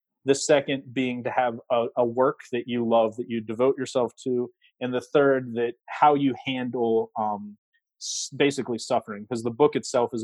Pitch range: 115-130 Hz